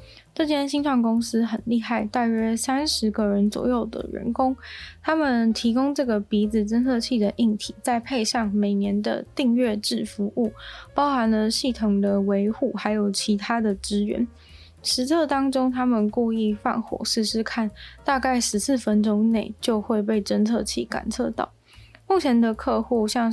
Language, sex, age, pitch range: Chinese, female, 20-39, 210-250 Hz